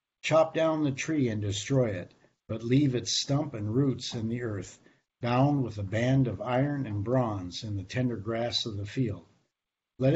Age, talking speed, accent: 60-79, 190 wpm, American